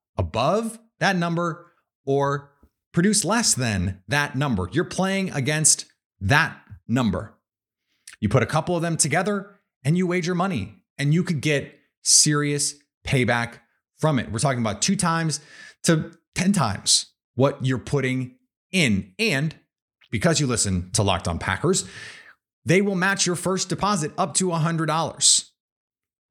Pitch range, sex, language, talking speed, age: 120-175 Hz, male, English, 145 wpm, 30-49